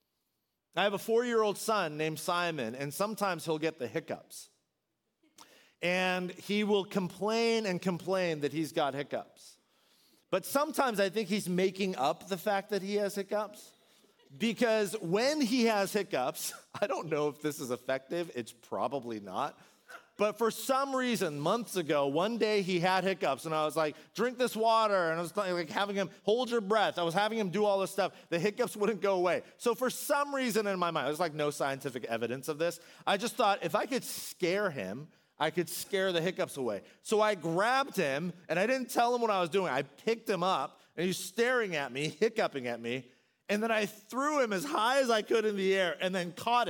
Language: English